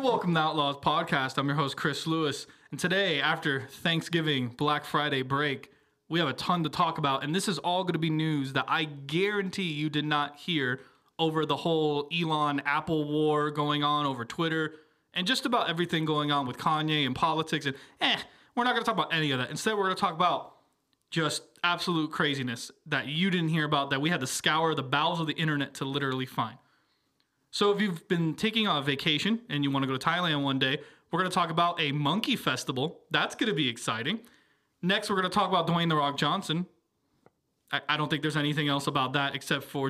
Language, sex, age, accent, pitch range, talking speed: English, male, 20-39, American, 140-175 Hz, 220 wpm